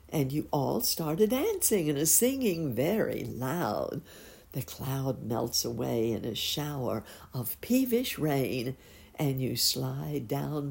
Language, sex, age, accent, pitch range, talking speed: English, female, 60-79, American, 125-160 Hz, 140 wpm